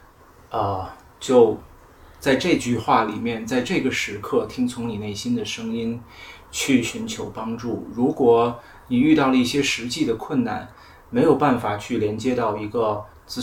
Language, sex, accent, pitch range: Chinese, male, native, 110-130 Hz